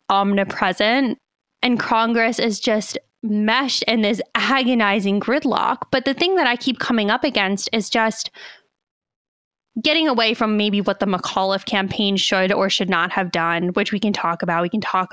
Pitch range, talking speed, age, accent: 195-240 Hz, 170 wpm, 10-29, American